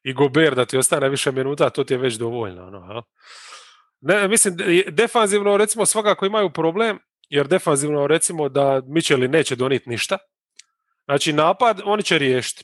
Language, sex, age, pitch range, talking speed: English, male, 30-49, 145-200 Hz, 160 wpm